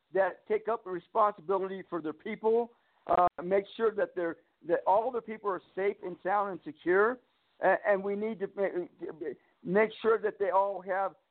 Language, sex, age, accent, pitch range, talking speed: English, male, 50-69, American, 160-205 Hz, 175 wpm